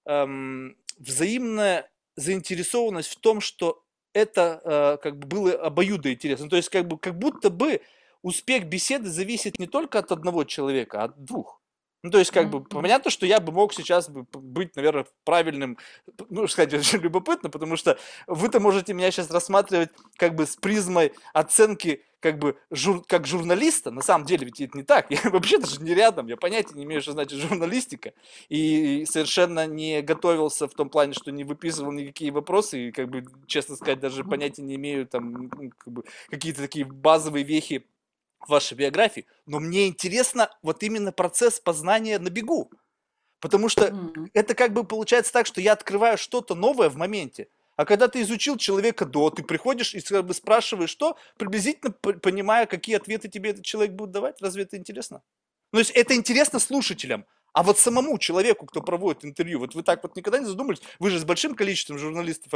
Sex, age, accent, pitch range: male, 20-39, native, 155-215 Hz